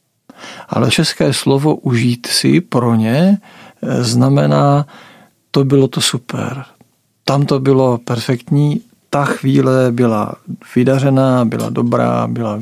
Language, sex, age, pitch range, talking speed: Czech, male, 50-69, 115-140 Hz, 105 wpm